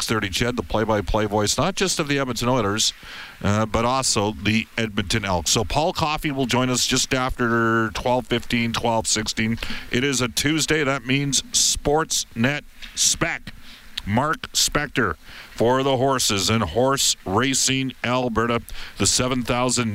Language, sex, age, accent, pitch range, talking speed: English, male, 50-69, American, 105-130 Hz, 140 wpm